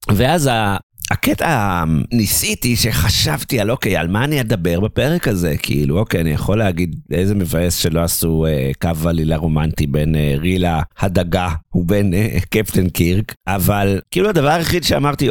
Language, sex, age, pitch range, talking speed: Hebrew, male, 50-69, 85-120 Hz, 150 wpm